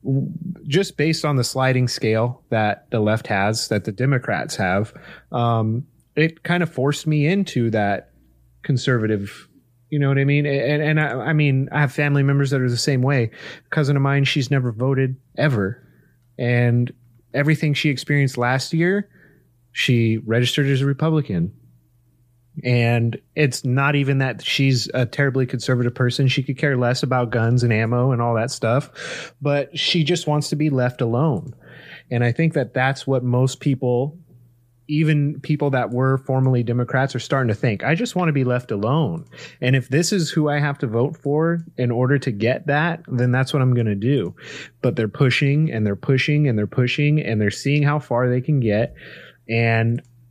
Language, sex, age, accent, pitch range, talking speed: English, male, 30-49, American, 120-145 Hz, 185 wpm